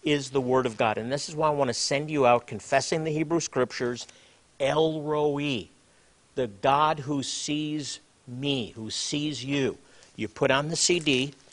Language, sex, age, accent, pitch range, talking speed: English, male, 50-69, American, 125-155 Hz, 175 wpm